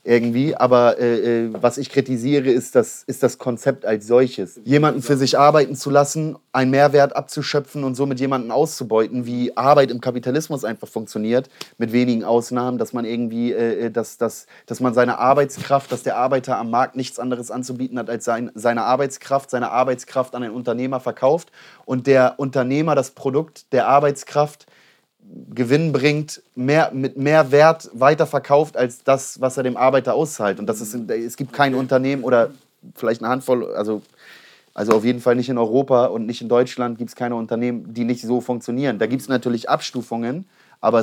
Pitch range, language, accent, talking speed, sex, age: 120-140 Hz, German, German, 180 wpm, male, 30-49